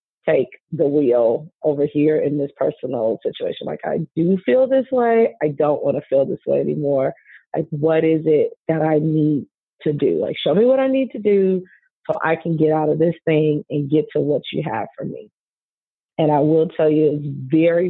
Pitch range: 145-160 Hz